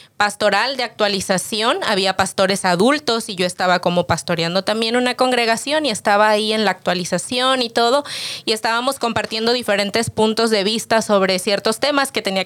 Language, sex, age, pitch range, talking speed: English, female, 20-39, 200-245 Hz, 165 wpm